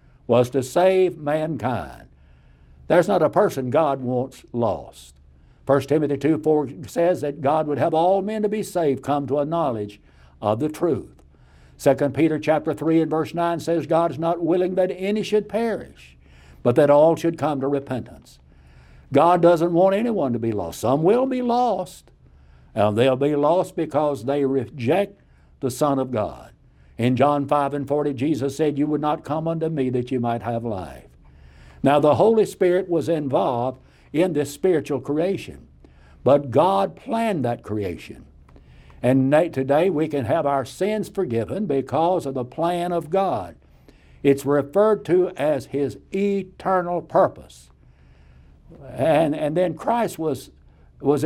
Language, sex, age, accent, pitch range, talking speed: English, male, 60-79, American, 105-165 Hz, 160 wpm